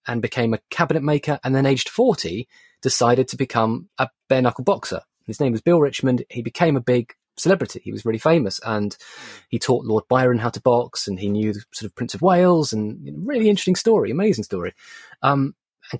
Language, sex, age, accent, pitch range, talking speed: English, male, 20-39, British, 115-150 Hz, 205 wpm